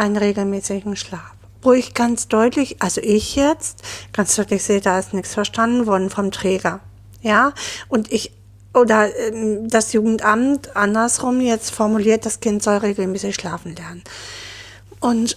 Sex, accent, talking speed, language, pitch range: female, German, 140 wpm, German, 195-245 Hz